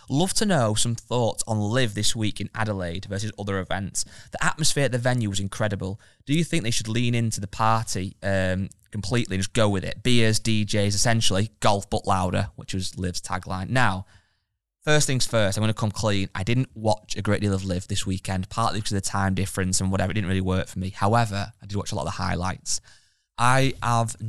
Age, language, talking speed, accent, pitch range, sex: 20-39, English, 225 wpm, British, 95-115 Hz, male